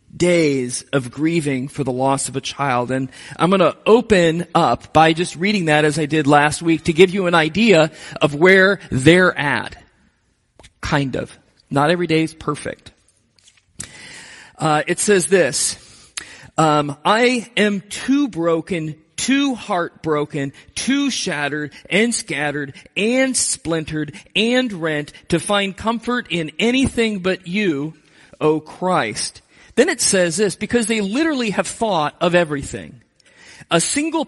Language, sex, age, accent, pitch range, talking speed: English, male, 40-59, American, 160-235 Hz, 140 wpm